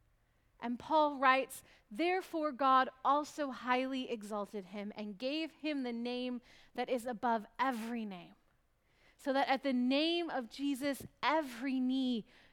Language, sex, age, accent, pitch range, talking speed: English, female, 30-49, American, 210-260 Hz, 135 wpm